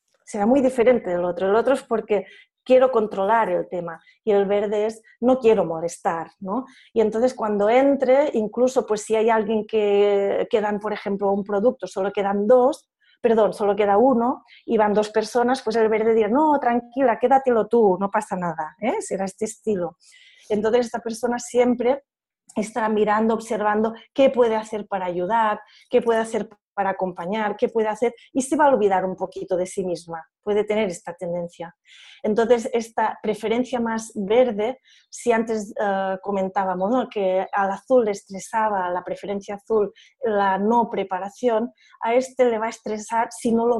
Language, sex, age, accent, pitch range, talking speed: Spanish, female, 30-49, Spanish, 200-245 Hz, 175 wpm